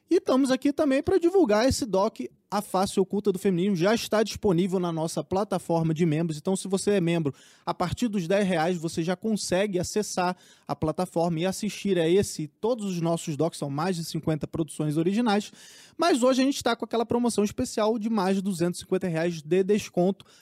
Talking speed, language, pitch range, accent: 190 wpm, Portuguese, 175-220 Hz, Brazilian